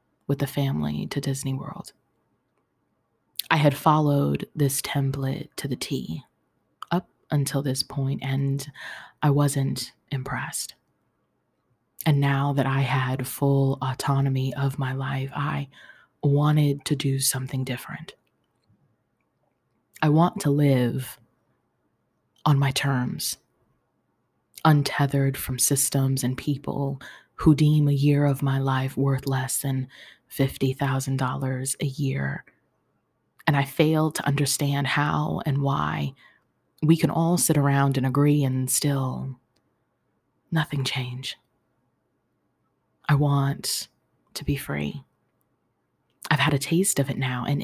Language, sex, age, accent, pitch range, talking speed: English, female, 20-39, American, 130-145 Hz, 120 wpm